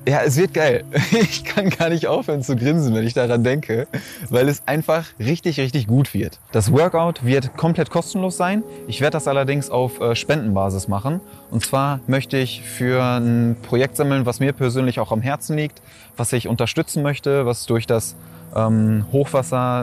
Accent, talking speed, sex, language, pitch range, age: German, 175 wpm, male, German, 110-135 Hz, 20-39